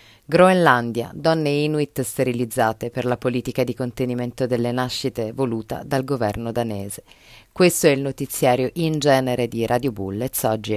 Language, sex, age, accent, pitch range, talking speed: Italian, female, 30-49, native, 120-145 Hz, 140 wpm